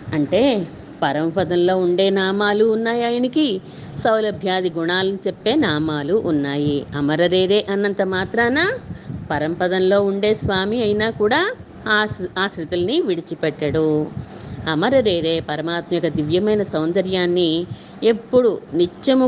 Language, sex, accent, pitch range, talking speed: Telugu, female, native, 160-200 Hz, 85 wpm